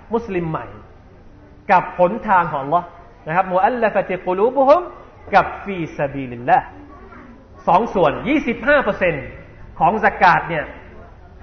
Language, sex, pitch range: Thai, male, 160-260 Hz